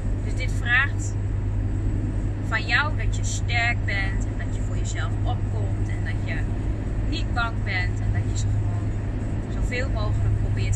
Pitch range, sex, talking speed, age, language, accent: 100-105 Hz, female, 155 wpm, 20-39, Dutch, Dutch